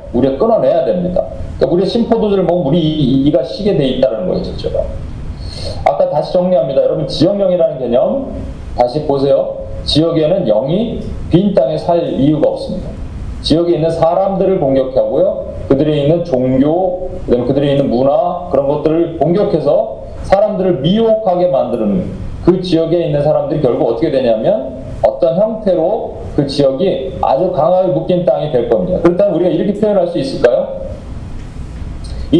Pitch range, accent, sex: 135-185 Hz, native, male